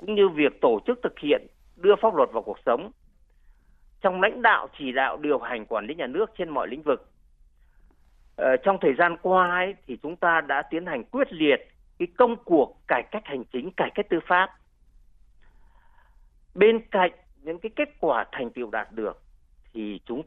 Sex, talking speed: male, 190 wpm